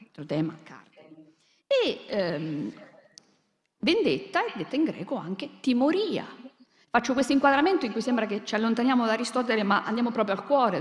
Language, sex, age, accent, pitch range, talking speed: Italian, female, 50-69, native, 180-260 Hz, 140 wpm